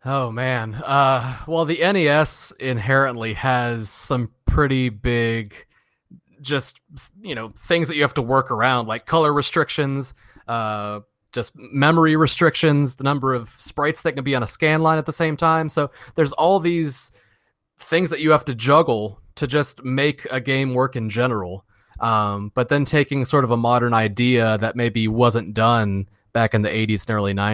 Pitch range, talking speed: 115-150 Hz, 175 wpm